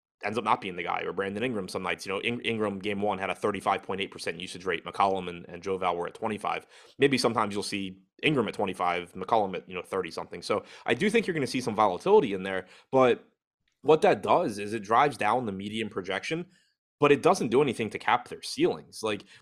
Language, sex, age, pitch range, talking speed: English, male, 20-39, 100-120 Hz, 230 wpm